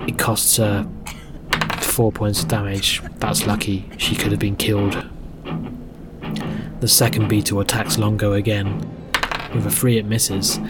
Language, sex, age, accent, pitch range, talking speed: English, male, 20-39, British, 95-110 Hz, 140 wpm